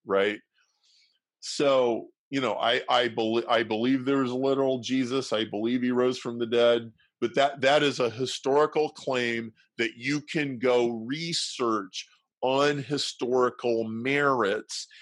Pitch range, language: 115-140 Hz, English